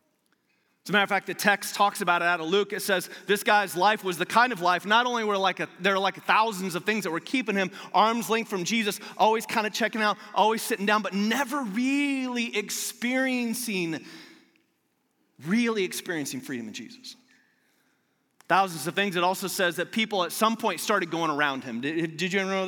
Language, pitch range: English, 175-230 Hz